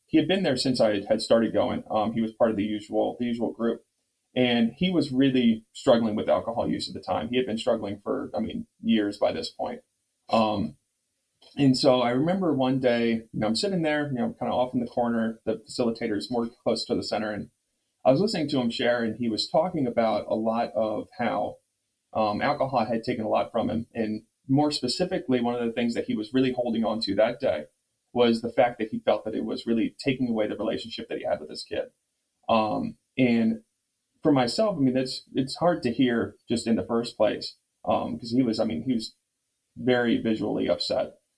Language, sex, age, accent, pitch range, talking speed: English, male, 20-39, American, 115-135 Hz, 225 wpm